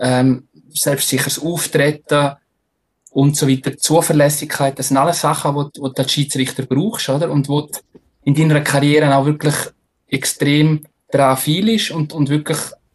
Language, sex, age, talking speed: German, male, 20-39, 140 wpm